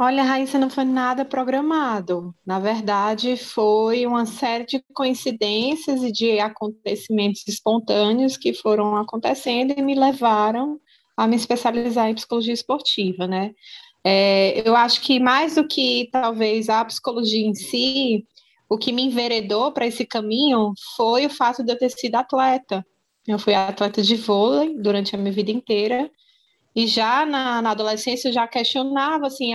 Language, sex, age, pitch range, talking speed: Portuguese, female, 20-39, 215-260 Hz, 155 wpm